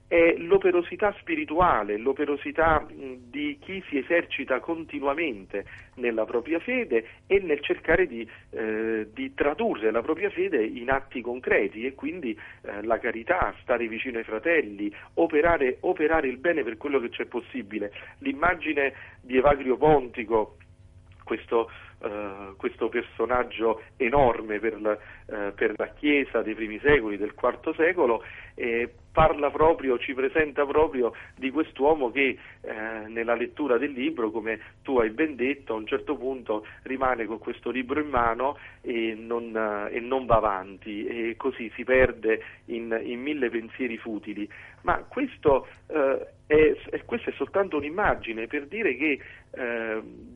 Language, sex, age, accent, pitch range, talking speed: Italian, male, 40-59, native, 110-155 Hz, 140 wpm